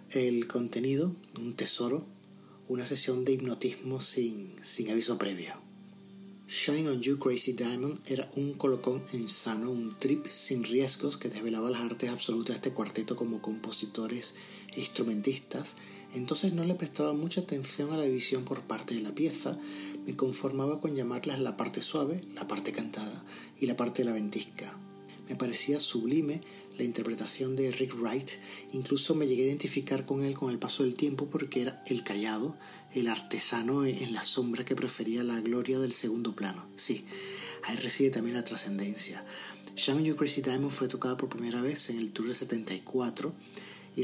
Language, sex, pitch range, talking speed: Spanish, male, 115-135 Hz, 170 wpm